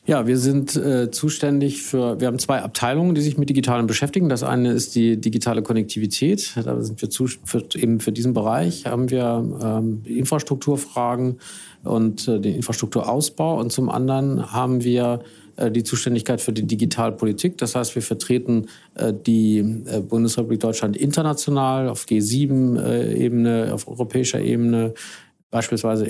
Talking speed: 145 wpm